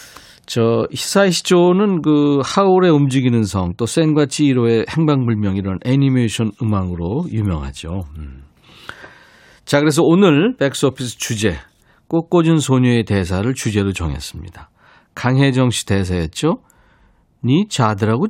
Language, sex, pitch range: Korean, male, 105-145 Hz